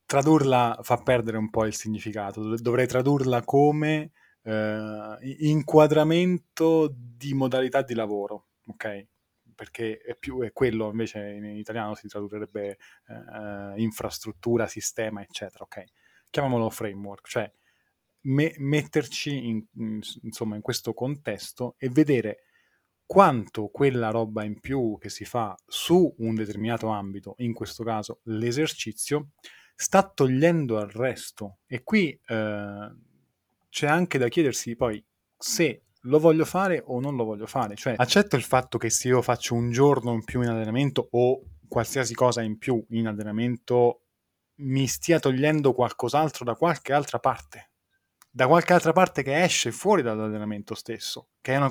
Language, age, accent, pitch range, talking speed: Italian, 20-39, native, 110-140 Hz, 140 wpm